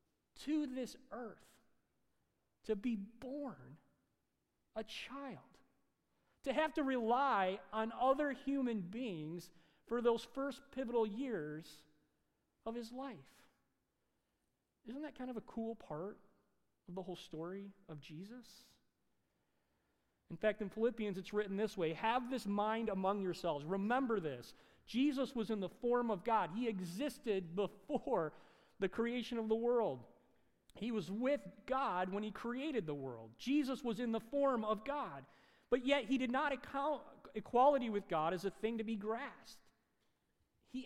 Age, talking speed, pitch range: 40-59, 145 wpm, 190-255 Hz